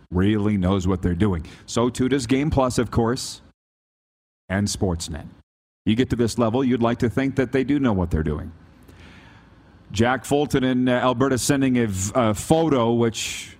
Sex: male